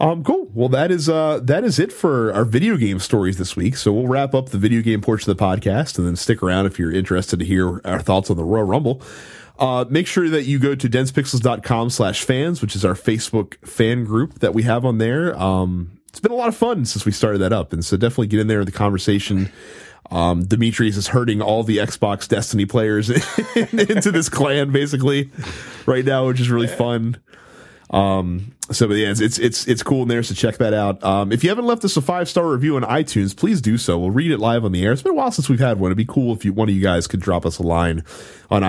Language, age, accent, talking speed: English, 30-49, American, 250 wpm